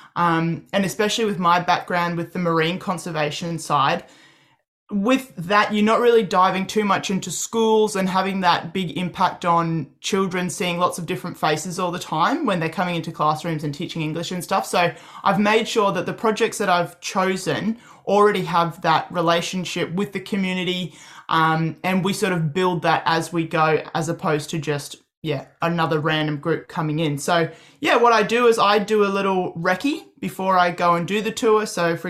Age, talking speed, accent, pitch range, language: 20-39, 195 wpm, Australian, 165-205 Hz, English